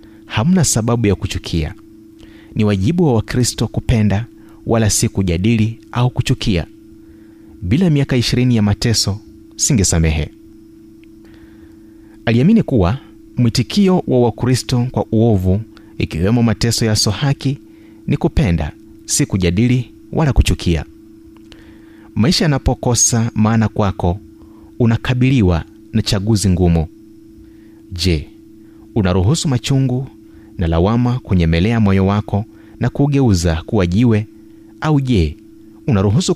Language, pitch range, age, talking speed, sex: Swahili, 105-120 Hz, 30-49, 95 wpm, male